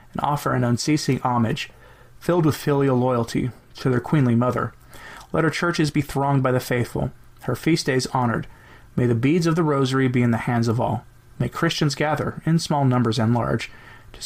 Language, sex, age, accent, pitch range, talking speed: English, male, 30-49, American, 120-145 Hz, 195 wpm